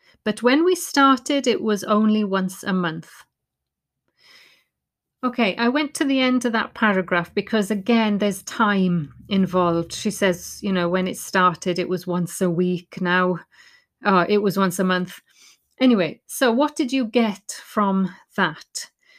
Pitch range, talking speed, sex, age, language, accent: 190-240 Hz, 160 wpm, female, 40-59, English, British